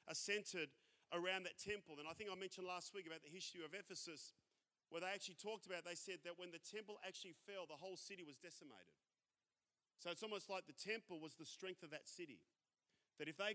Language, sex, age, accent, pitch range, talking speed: English, male, 40-59, Australian, 155-195 Hz, 220 wpm